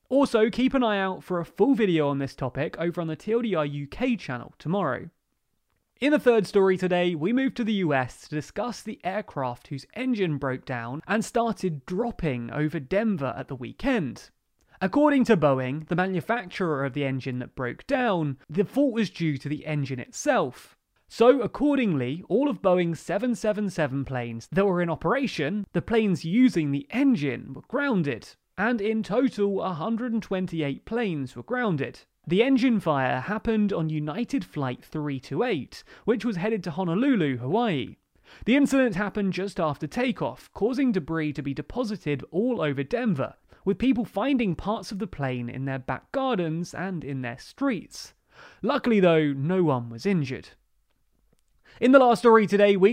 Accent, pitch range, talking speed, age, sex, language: British, 145-225 Hz, 165 wpm, 30-49, male, English